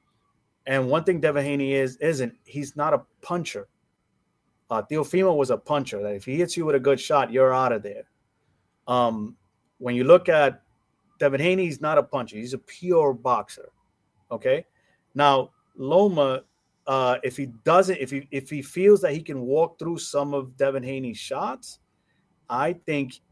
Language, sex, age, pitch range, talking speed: English, male, 30-49, 120-145 Hz, 175 wpm